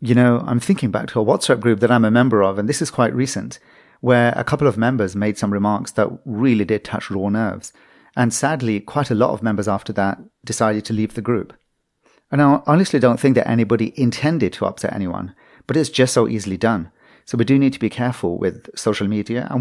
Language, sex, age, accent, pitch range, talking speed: English, male, 40-59, British, 100-120 Hz, 230 wpm